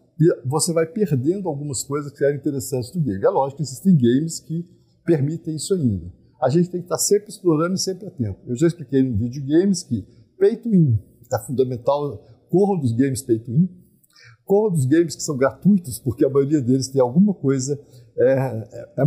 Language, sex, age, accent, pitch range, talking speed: Portuguese, male, 50-69, Brazilian, 130-175 Hz, 200 wpm